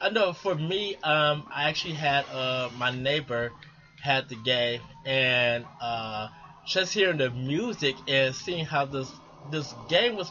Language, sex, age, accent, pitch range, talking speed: English, male, 20-39, American, 135-180 Hz, 155 wpm